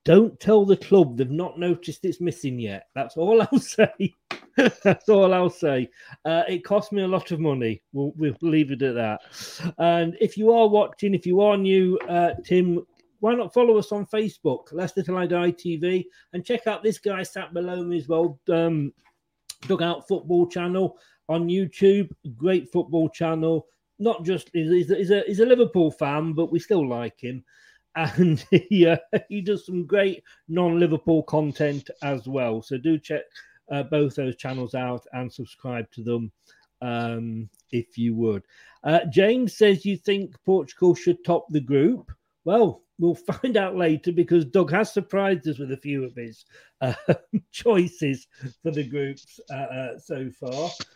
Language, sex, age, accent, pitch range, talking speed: English, male, 40-59, British, 140-190 Hz, 170 wpm